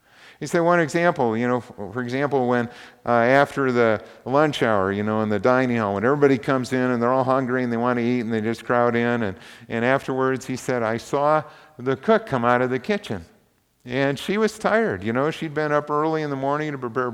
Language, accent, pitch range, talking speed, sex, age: English, American, 100-130 Hz, 235 wpm, male, 50-69